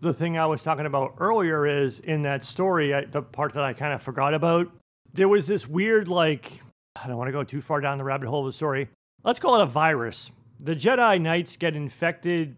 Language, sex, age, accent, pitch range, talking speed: English, male, 40-59, American, 140-175 Hz, 230 wpm